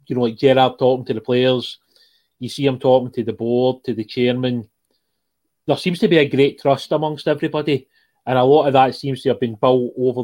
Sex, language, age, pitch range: male, English, 30-49, 120-140 Hz